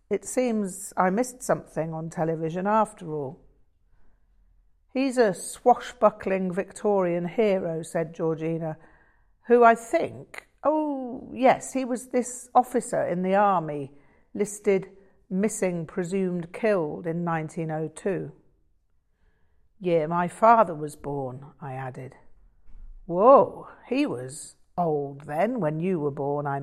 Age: 50-69